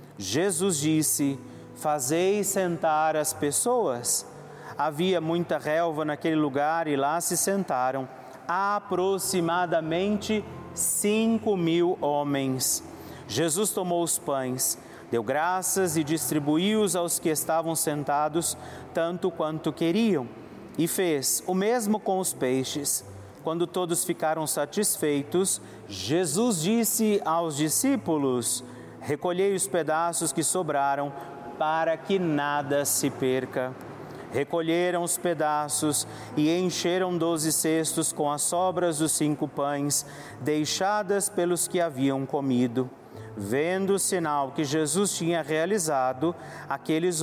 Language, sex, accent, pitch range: Portuguese, male, Brazilian, 145-180 Hz